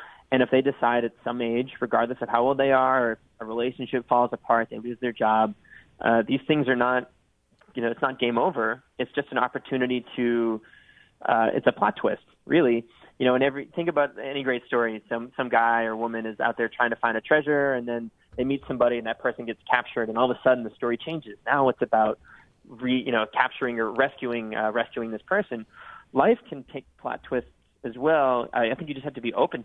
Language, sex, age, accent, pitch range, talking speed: English, male, 20-39, American, 115-130 Hz, 230 wpm